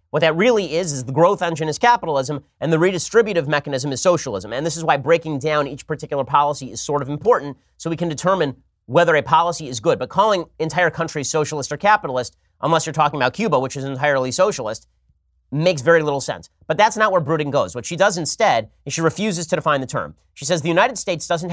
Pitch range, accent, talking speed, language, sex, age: 140-175 Hz, American, 225 wpm, English, male, 30-49